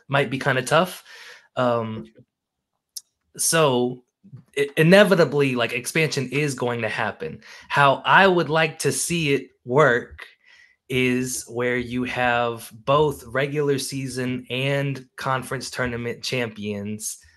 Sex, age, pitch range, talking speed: male, 20-39, 120-140 Hz, 115 wpm